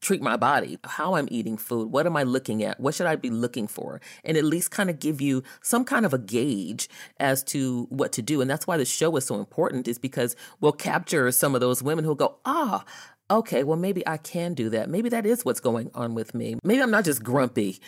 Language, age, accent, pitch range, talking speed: English, 30-49, American, 120-165 Hz, 250 wpm